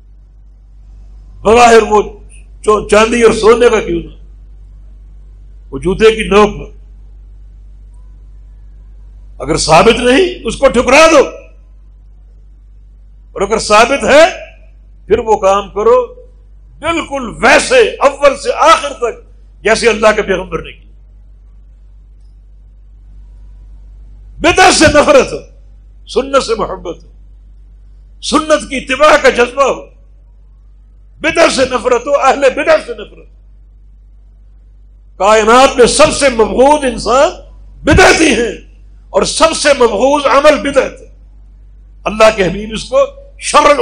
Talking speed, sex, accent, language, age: 110 wpm, male, Indian, English, 60-79